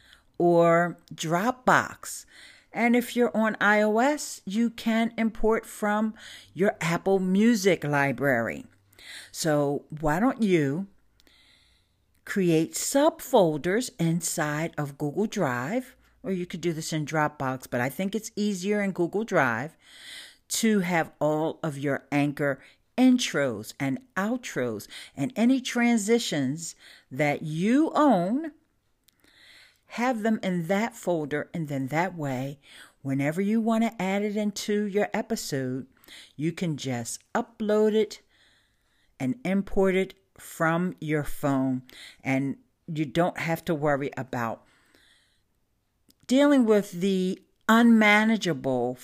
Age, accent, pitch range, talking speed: 50-69, American, 145-220 Hz, 115 wpm